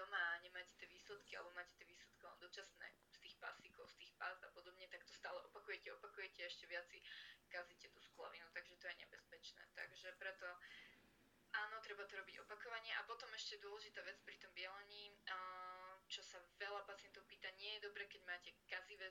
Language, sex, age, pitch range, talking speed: Slovak, female, 20-39, 180-200 Hz, 185 wpm